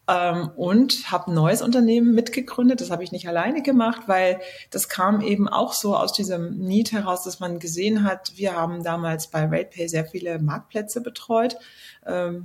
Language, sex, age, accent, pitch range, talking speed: German, female, 30-49, German, 185-225 Hz, 175 wpm